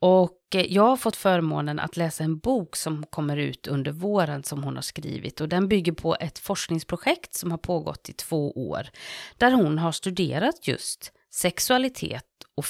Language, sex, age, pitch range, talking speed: English, female, 30-49, 150-185 Hz, 175 wpm